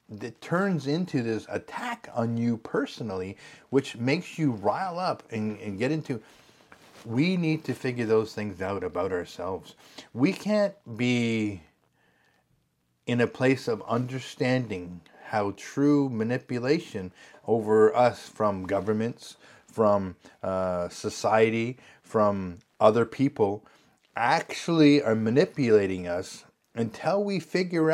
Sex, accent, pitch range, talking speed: male, American, 110-155 Hz, 115 wpm